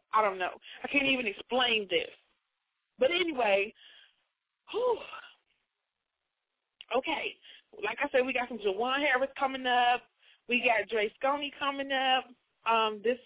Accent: American